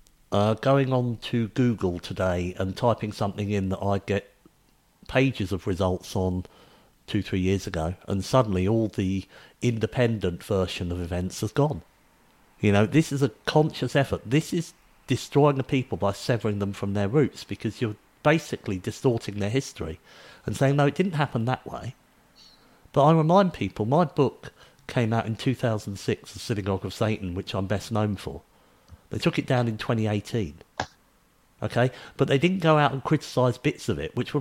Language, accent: English, British